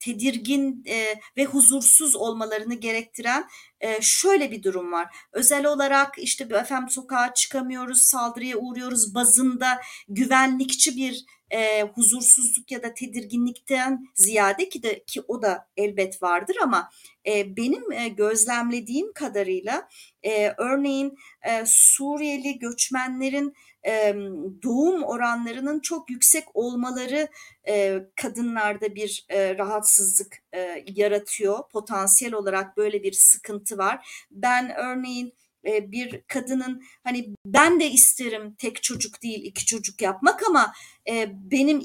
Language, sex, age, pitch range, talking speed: Turkish, female, 40-59, 215-275 Hz, 100 wpm